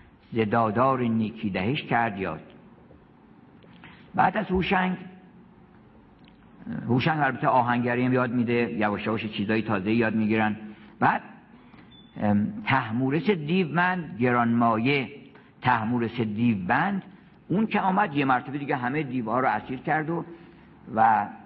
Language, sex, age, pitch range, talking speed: Persian, male, 50-69, 115-175 Hz, 115 wpm